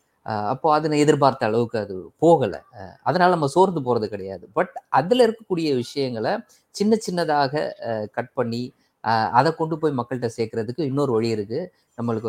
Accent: native